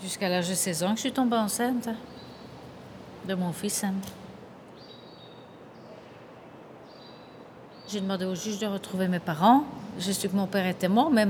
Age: 40-59